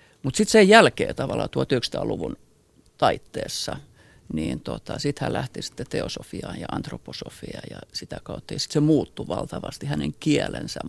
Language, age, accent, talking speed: Finnish, 50-69, native, 145 wpm